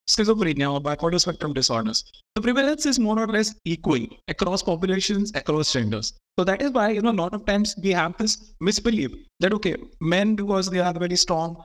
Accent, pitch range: Indian, 170-220 Hz